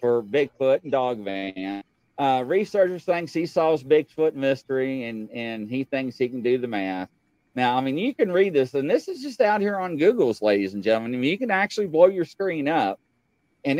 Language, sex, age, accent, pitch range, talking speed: English, male, 40-59, American, 135-200 Hz, 215 wpm